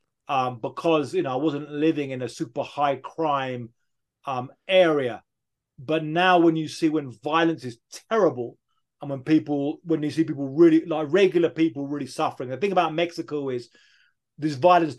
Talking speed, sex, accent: 170 wpm, male, British